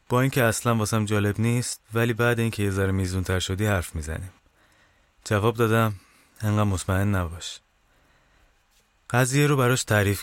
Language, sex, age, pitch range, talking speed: Persian, male, 30-49, 90-115 Hz, 135 wpm